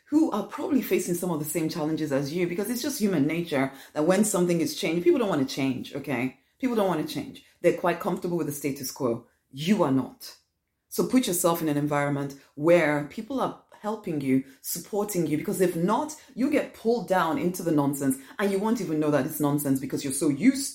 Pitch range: 145-195 Hz